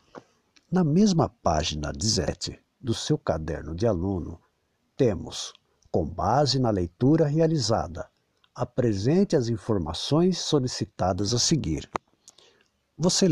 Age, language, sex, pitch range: 60-79, Portuguese, male, 95-145 Hz